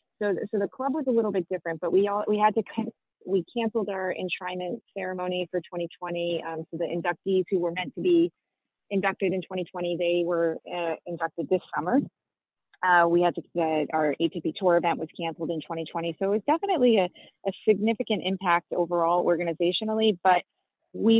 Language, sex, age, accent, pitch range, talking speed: English, female, 30-49, American, 165-200 Hz, 185 wpm